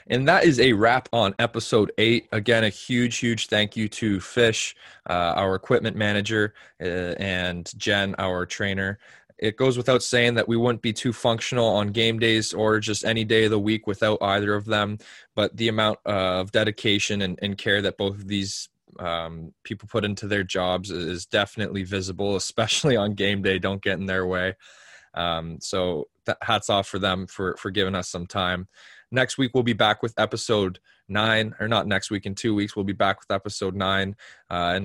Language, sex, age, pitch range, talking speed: English, male, 20-39, 95-110 Hz, 195 wpm